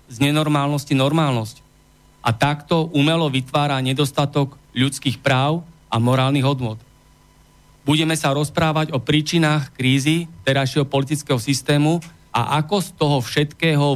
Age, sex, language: 40-59, male, Slovak